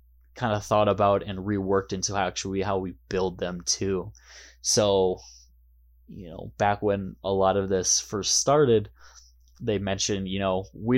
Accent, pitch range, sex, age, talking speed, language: American, 90-105 Hz, male, 20-39, 160 wpm, English